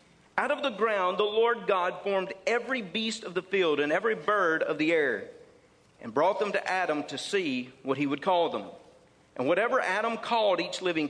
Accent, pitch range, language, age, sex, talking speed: American, 155-215 Hz, English, 50-69, male, 200 wpm